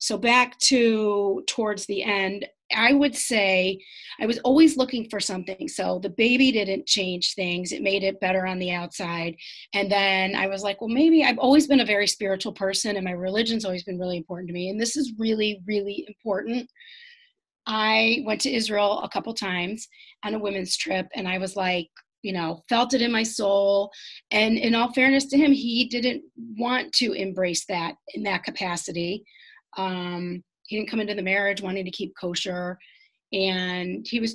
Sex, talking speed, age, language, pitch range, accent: female, 190 wpm, 30-49, English, 190-235 Hz, American